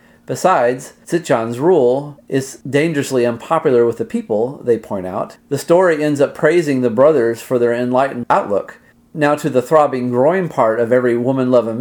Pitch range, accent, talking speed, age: 120-150 Hz, American, 165 wpm, 40-59